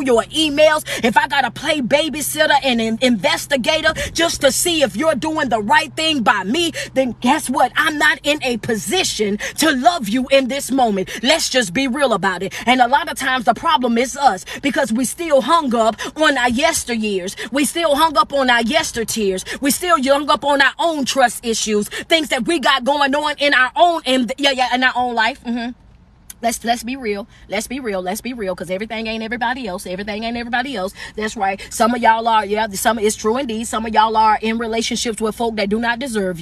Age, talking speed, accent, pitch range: 20-39, 220 wpm, American, 220-275 Hz